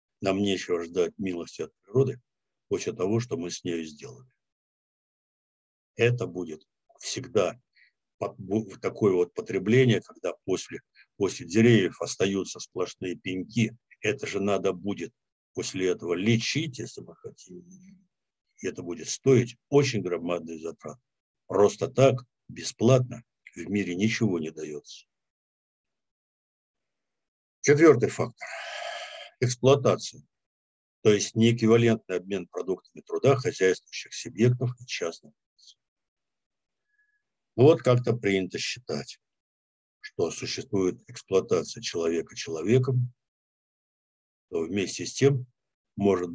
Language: Russian